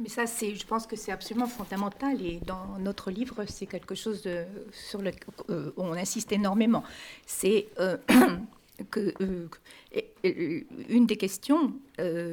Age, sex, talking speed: 50-69, female, 150 wpm